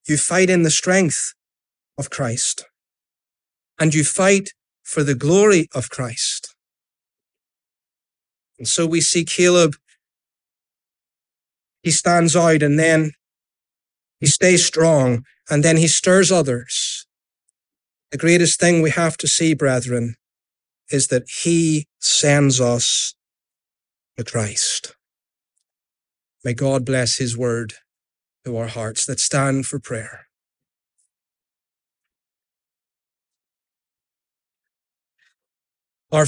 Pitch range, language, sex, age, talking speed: 120-165 Hz, English, male, 30-49, 100 wpm